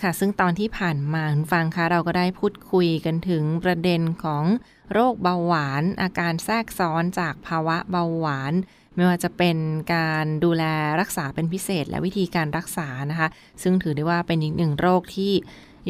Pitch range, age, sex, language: 160-195 Hz, 20-39, female, Thai